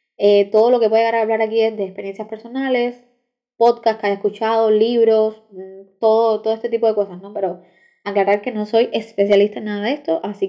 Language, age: Spanish, 10-29